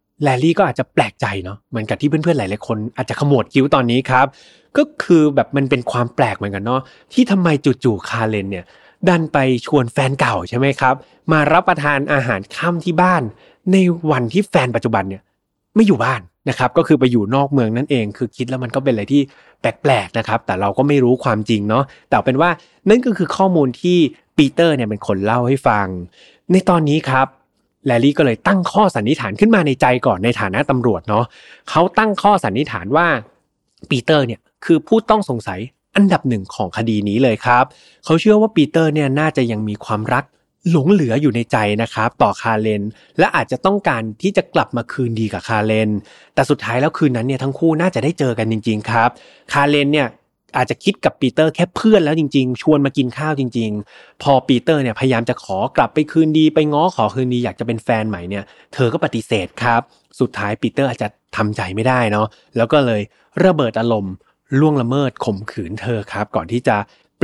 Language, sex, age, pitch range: Thai, male, 20-39, 115-155 Hz